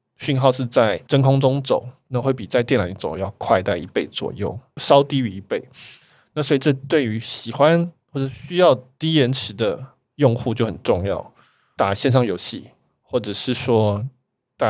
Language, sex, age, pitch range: Chinese, male, 20-39, 110-135 Hz